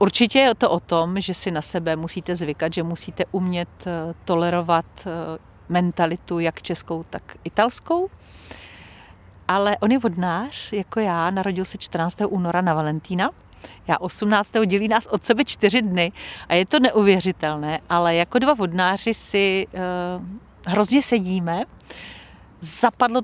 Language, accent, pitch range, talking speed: Czech, native, 165-200 Hz, 135 wpm